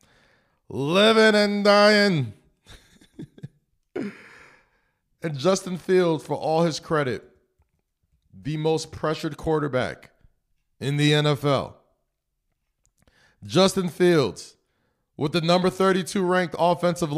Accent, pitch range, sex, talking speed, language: American, 120-175 Hz, male, 85 wpm, English